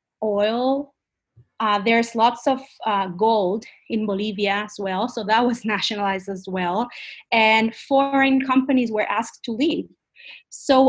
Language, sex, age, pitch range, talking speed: English, female, 30-49, 200-250 Hz, 140 wpm